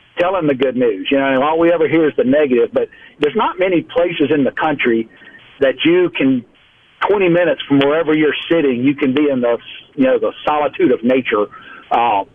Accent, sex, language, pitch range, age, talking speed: American, male, English, 130-160 Hz, 50-69, 210 wpm